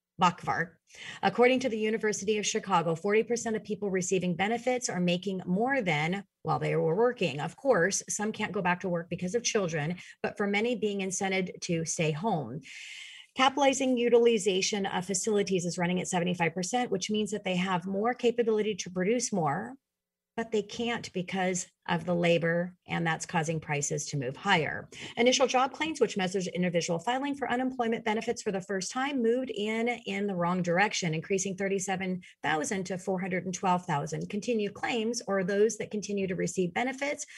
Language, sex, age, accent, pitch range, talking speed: English, female, 30-49, American, 175-235 Hz, 165 wpm